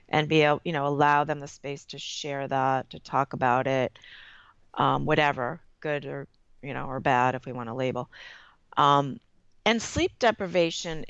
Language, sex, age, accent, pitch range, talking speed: English, female, 40-59, American, 145-170 Hz, 180 wpm